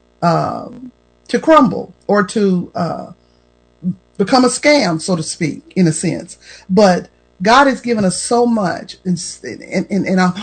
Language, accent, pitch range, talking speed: English, American, 165-230 Hz, 150 wpm